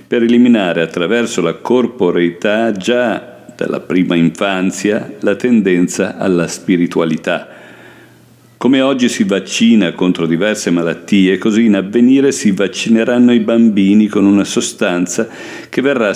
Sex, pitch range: male, 90-120 Hz